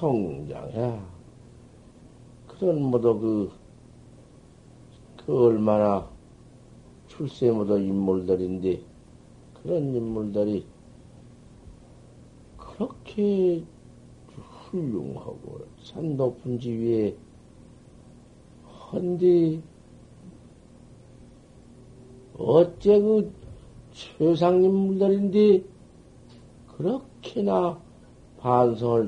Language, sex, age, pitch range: Korean, male, 60-79, 115-170 Hz